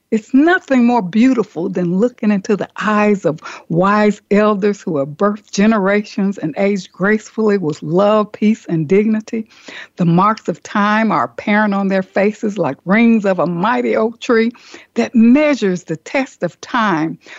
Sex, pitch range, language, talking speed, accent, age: female, 190-245 Hz, English, 160 wpm, American, 60-79